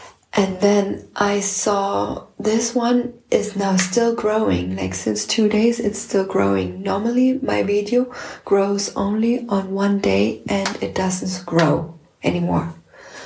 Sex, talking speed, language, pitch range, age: female, 135 wpm, English, 190-220 Hz, 20-39